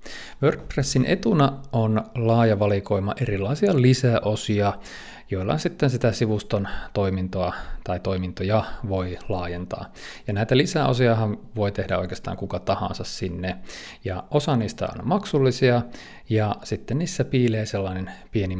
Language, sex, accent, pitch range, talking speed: Finnish, male, native, 100-120 Hz, 115 wpm